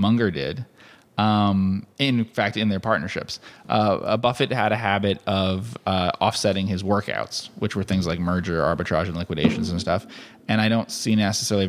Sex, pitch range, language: male, 90-105 Hz, English